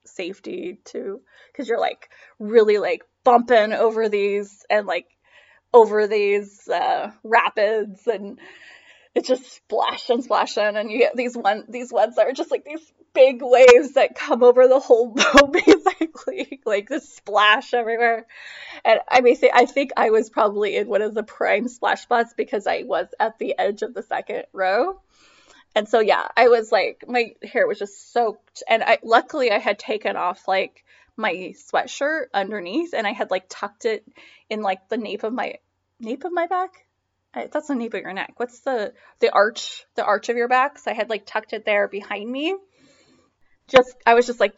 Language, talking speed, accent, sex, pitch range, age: English, 190 wpm, American, female, 210-275 Hz, 20-39